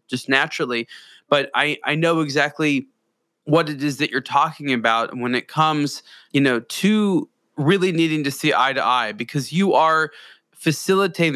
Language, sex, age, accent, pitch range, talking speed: English, male, 20-39, American, 130-160 Hz, 165 wpm